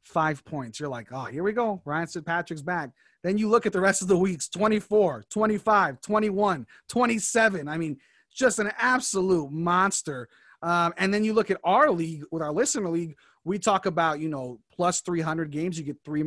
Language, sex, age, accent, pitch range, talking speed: English, male, 30-49, American, 155-195 Hz, 200 wpm